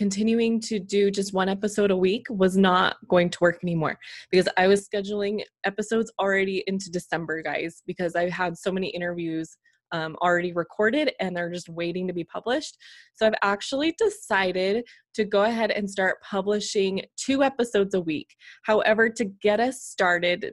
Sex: female